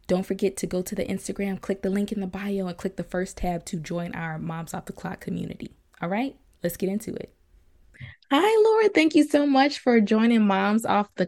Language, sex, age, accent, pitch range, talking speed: English, female, 20-39, American, 170-210 Hz, 230 wpm